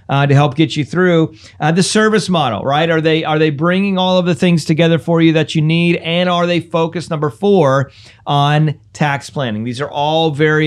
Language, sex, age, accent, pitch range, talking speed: English, male, 40-59, American, 145-170 Hz, 215 wpm